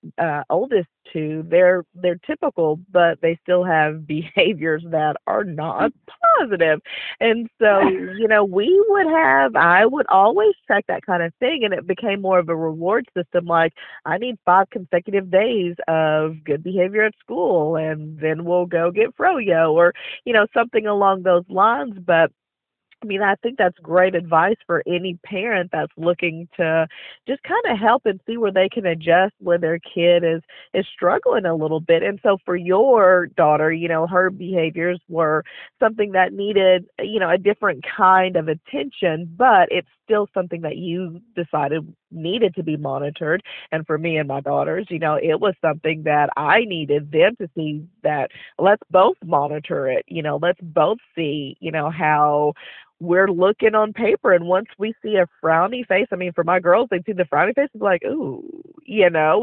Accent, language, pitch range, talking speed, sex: American, English, 160-210 Hz, 185 wpm, female